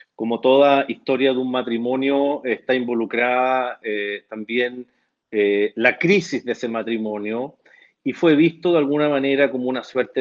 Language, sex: Spanish, male